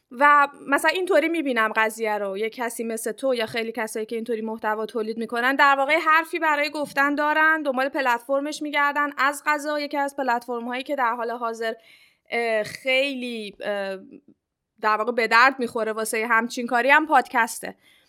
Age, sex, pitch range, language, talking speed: 20-39, female, 235-285 Hz, Persian, 155 wpm